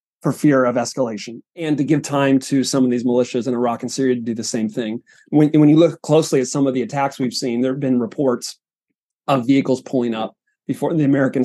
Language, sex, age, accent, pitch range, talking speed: English, male, 30-49, American, 125-145 Hz, 230 wpm